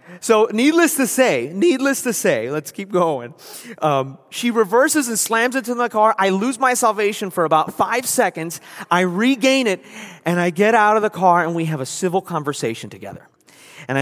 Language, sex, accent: English, male, American